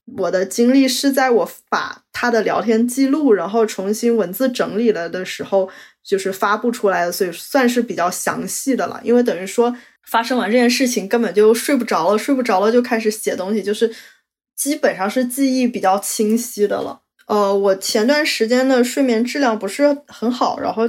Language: Chinese